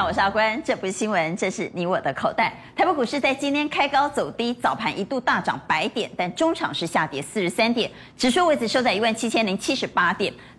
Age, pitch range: 30-49, 195-285 Hz